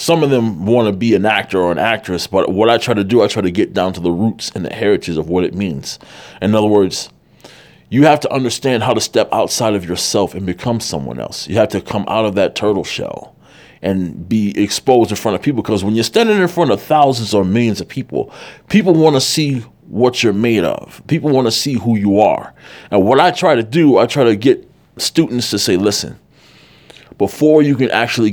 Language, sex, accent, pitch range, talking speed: English, male, American, 100-130 Hz, 235 wpm